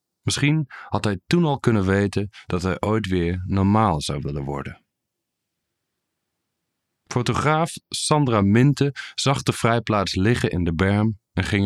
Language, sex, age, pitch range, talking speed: English, male, 40-59, 90-120 Hz, 140 wpm